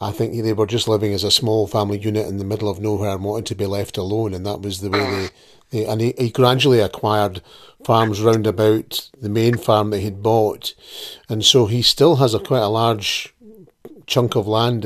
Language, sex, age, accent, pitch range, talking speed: English, male, 40-59, British, 105-130 Hz, 220 wpm